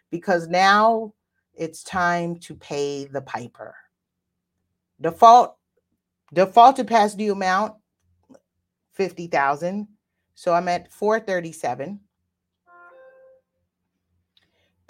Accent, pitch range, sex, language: American, 140-210 Hz, female, English